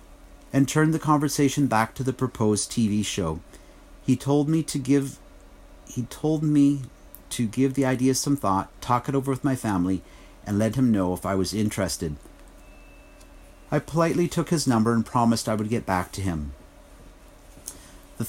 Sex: male